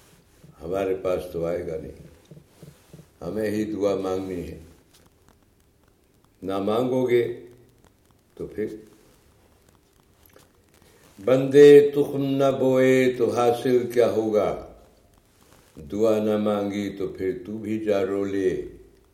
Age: 60-79